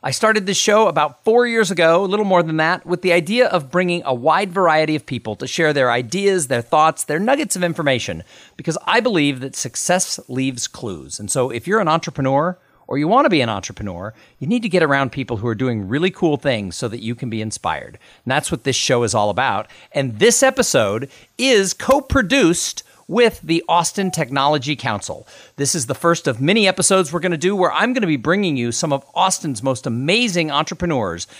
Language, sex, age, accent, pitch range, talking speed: English, male, 40-59, American, 135-195 Hz, 210 wpm